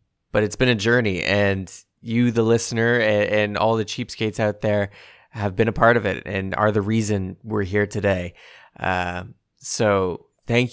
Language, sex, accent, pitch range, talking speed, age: English, male, American, 100-120 Hz, 175 wpm, 20-39